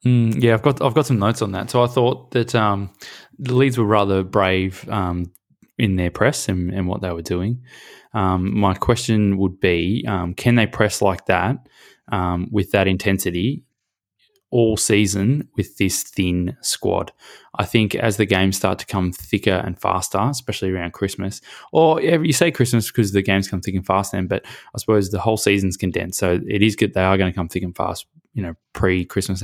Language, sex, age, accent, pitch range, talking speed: English, male, 20-39, Australian, 95-115 Hz, 205 wpm